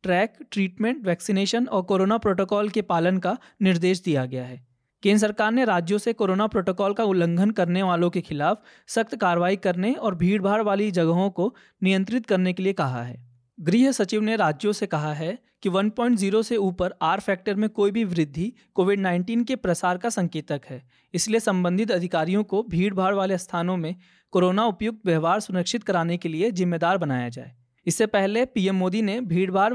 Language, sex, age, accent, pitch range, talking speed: Hindi, male, 20-39, native, 175-210 Hz, 180 wpm